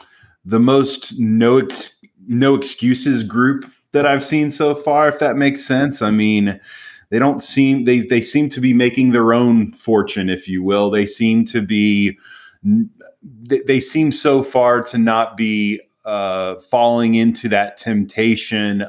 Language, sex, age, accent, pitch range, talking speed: English, male, 20-39, American, 100-125 Hz, 155 wpm